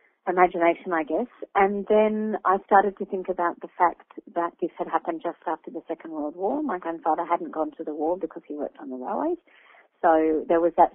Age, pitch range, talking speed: 40-59, 160-195 Hz, 215 wpm